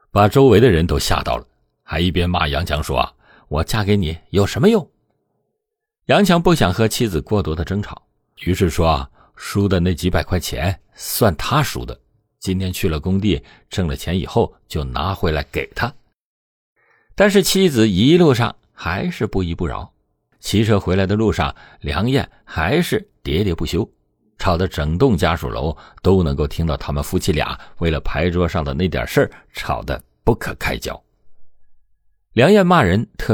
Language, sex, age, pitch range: Chinese, male, 50-69, 80-105 Hz